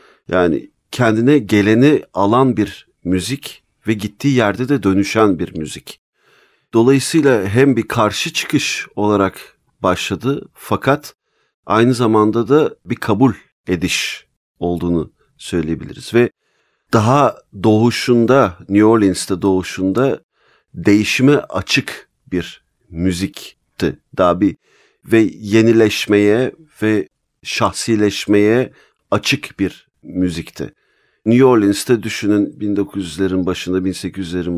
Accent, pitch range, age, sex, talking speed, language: native, 100-125 Hz, 50-69, male, 95 wpm, Turkish